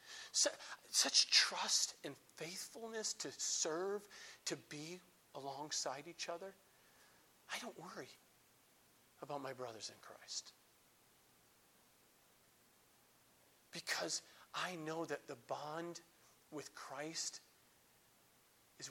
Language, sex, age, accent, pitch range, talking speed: English, male, 40-59, American, 145-220 Hz, 90 wpm